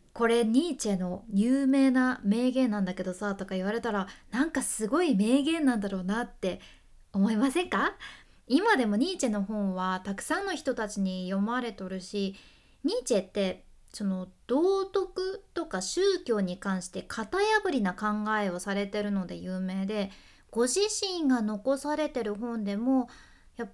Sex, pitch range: female, 200-290 Hz